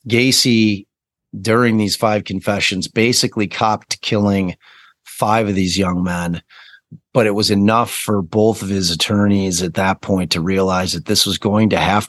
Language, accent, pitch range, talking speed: English, American, 95-110 Hz, 165 wpm